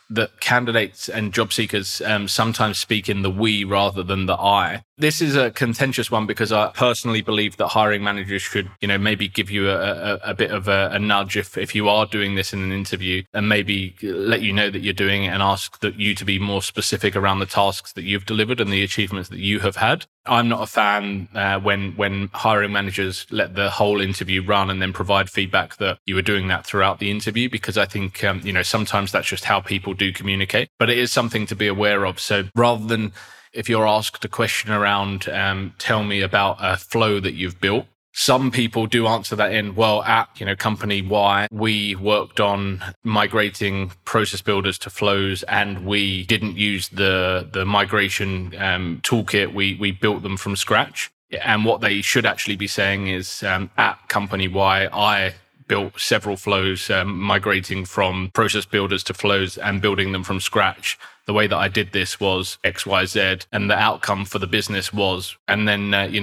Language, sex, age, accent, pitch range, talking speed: English, male, 20-39, British, 95-105 Hz, 205 wpm